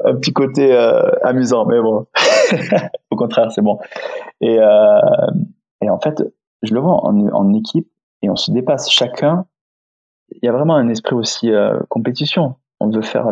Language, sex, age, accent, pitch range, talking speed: French, male, 20-39, French, 110-165 Hz, 170 wpm